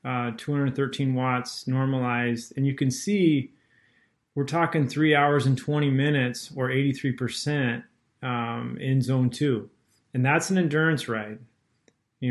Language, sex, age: English, male, 30-49